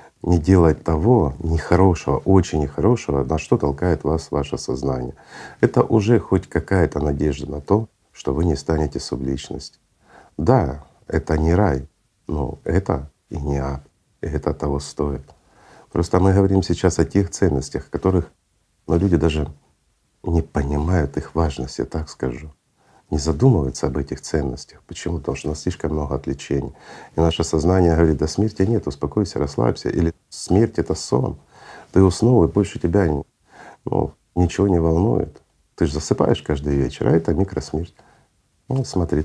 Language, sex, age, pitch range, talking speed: Russian, male, 50-69, 75-95 Hz, 150 wpm